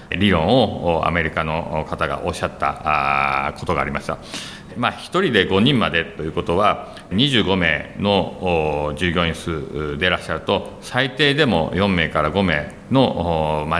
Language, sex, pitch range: Japanese, male, 80-120 Hz